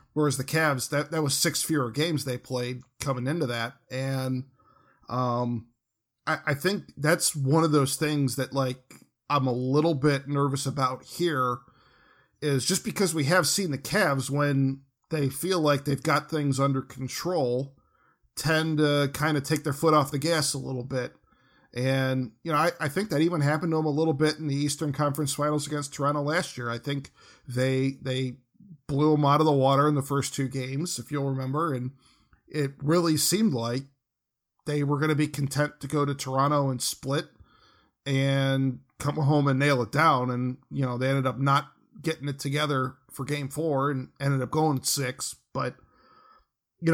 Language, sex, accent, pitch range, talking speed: English, male, American, 130-155 Hz, 190 wpm